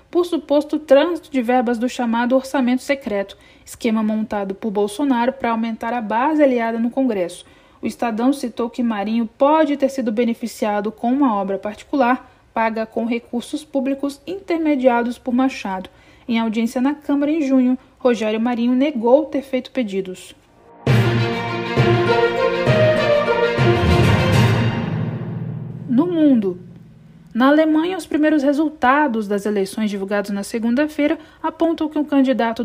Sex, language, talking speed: female, Portuguese, 125 wpm